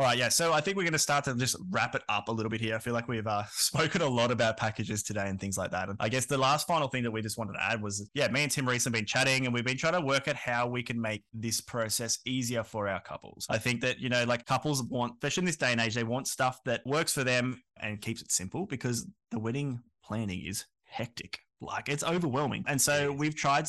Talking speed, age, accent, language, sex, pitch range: 280 wpm, 20-39, Australian, English, male, 110-140 Hz